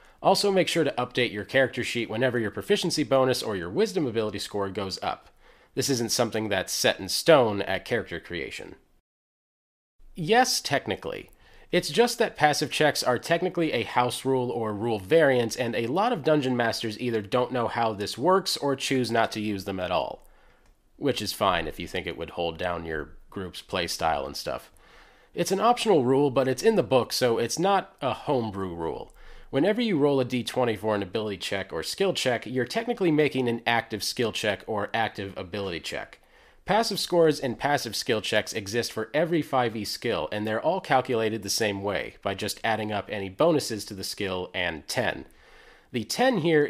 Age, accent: 30-49, American